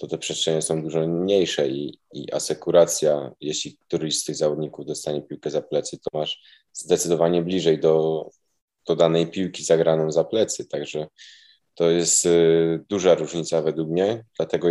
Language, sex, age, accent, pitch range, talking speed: Polish, male, 20-39, native, 80-85 Hz, 155 wpm